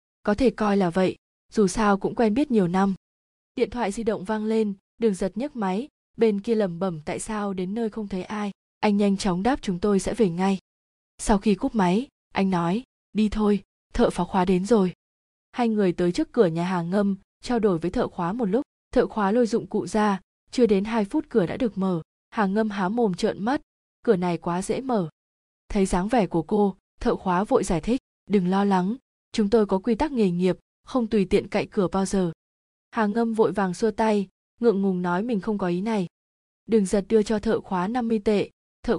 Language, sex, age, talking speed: Vietnamese, female, 20-39, 225 wpm